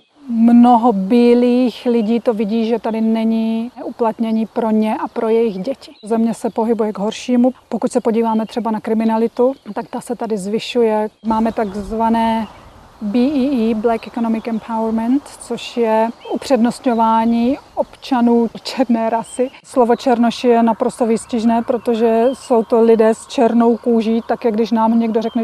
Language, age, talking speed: Czech, 30-49, 145 wpm